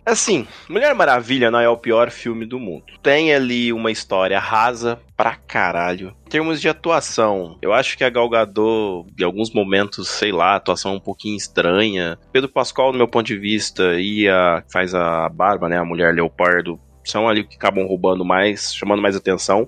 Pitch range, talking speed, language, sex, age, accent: 95-125 Hz, 195 wpm, Portuguese, male, 20-39, Brazilian